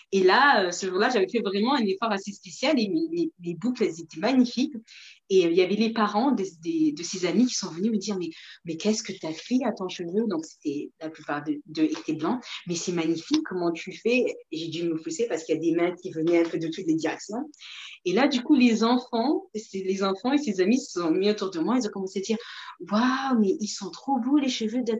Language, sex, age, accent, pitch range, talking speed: French, female, 40-59, French, 185-270 Hz, 260 wpm